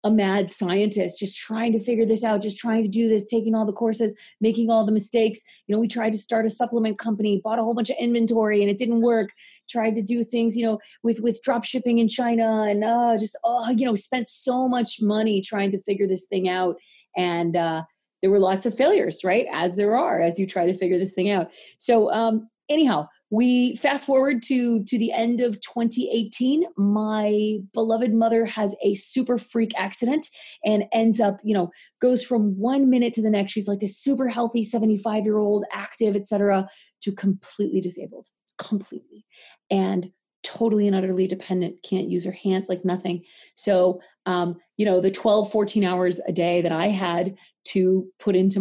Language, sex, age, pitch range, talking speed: English, female, 30-49, 185-230 Hz, 200 wpm